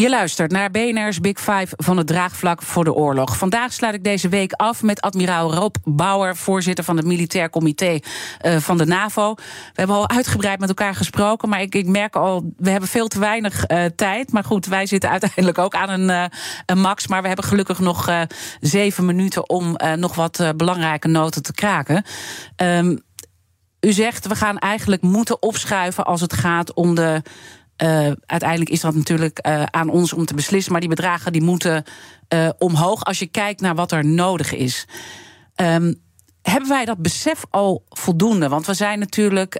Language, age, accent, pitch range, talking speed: Dutch, 40-59, Dutch, 165-200 Hz, 195 wpm